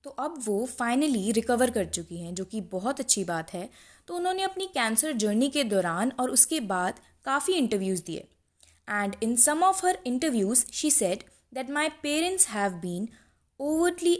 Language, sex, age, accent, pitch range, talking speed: Hindi, female, 20-39, native, 200-285 Hz, 175 wpm